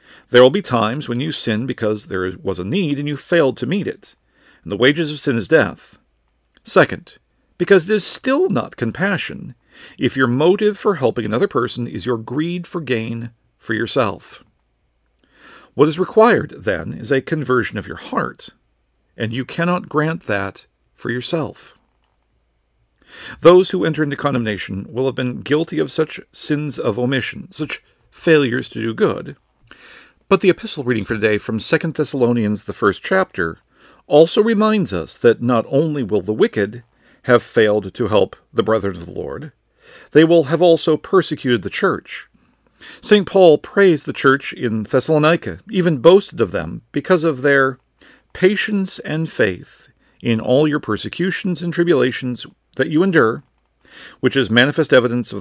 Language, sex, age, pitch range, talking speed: English, male, 50-69, 115-165 Hz, 160 wpm